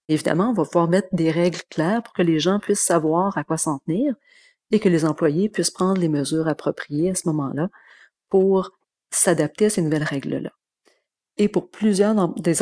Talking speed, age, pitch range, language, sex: 190 wpm, 40-59, 160-185 Hz, French, female